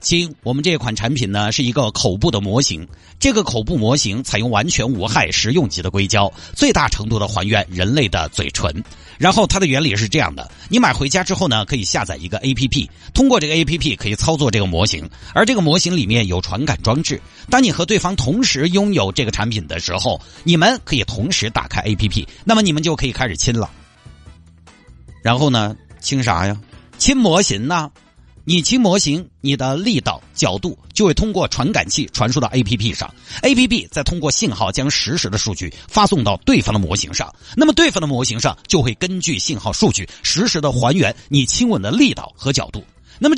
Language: Chinese